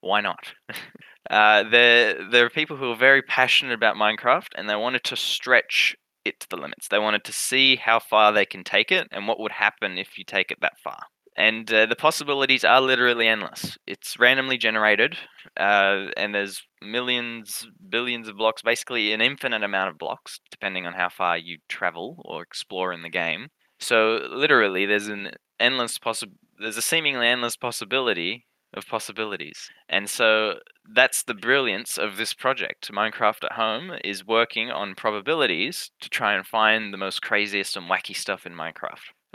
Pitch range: 105-125 Hz